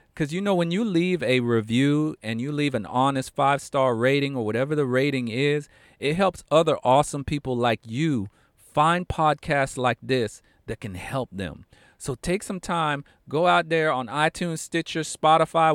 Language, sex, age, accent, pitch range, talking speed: English, male, 40-59, American, 120-160 Hz, 180 wpm